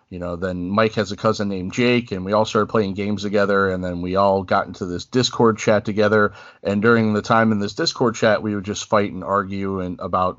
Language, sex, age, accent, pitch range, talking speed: English, male, 40-59, American, 100-115 Hz, 245 wpm